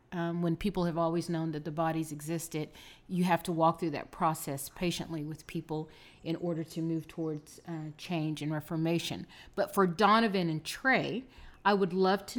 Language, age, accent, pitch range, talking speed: English, 40-59, American, 165-195 Hz, 185 wpm